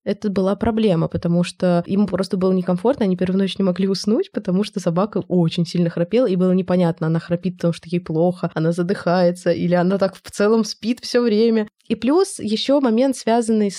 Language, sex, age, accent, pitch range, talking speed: Russian, female, 20-39, native, 180-220 Hz, 195 wpm